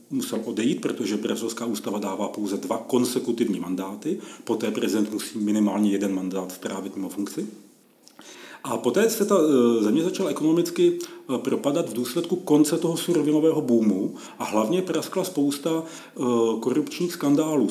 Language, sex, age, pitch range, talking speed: Czech, male, 40-59, 125-170 Hz, 130 wpm